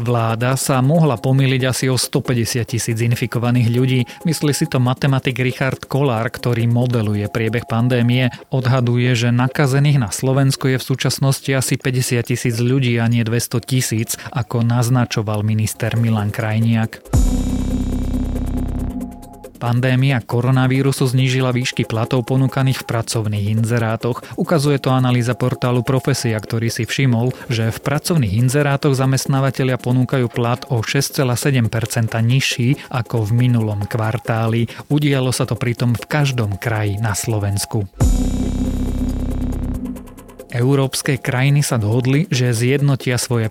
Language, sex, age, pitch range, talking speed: Slovak, male, 30-49, 115-130 Hz, 120 wpm